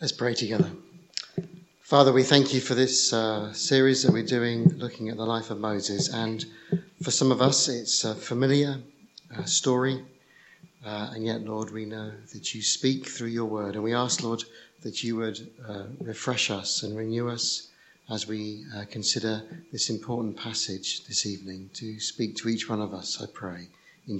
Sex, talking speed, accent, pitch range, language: male, 180 wpm, British, 110-145 Hz, English